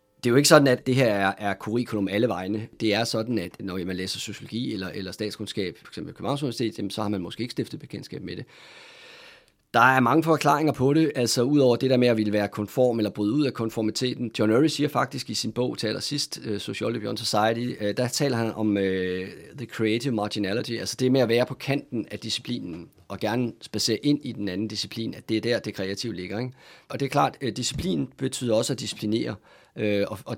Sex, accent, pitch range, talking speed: male, native, 105-130 Hz, 225 wpm